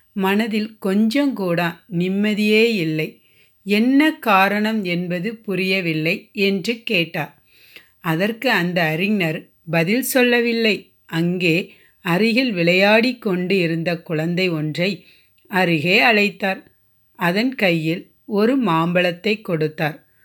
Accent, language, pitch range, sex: native, Tamil, 170-220 Hz, female